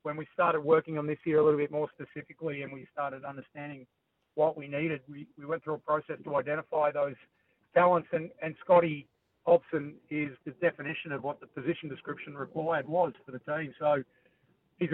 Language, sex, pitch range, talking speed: English, male, 150-175 Hz, 195 wpm